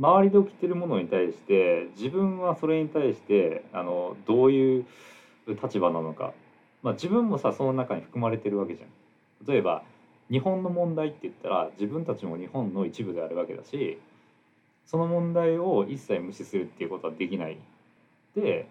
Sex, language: male, Japanese